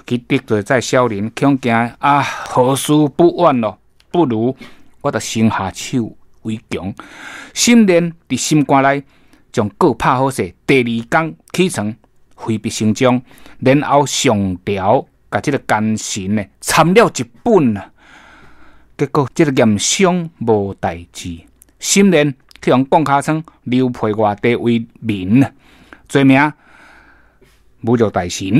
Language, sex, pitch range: Chinese, male, 105-145 Hz